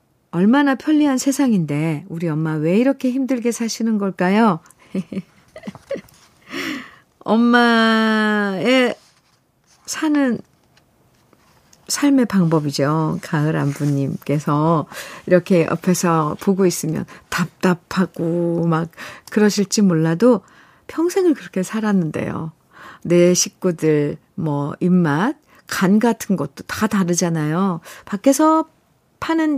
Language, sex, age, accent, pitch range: Korean, female, 50-69, native, 165-220 Hz